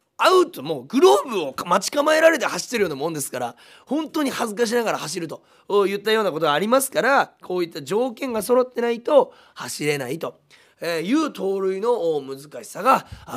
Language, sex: Japanese, male